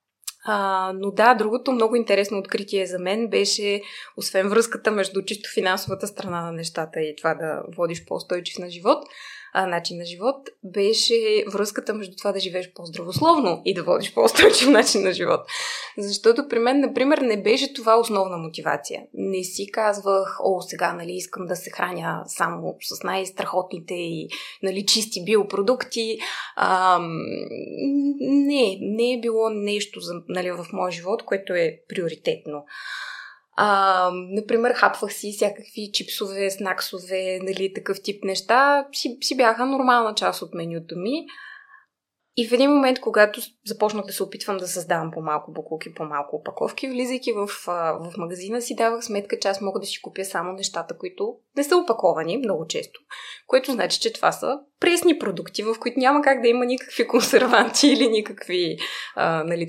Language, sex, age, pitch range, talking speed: Bulgarian, female, 20-39, 185-245 Hz, 160 wpm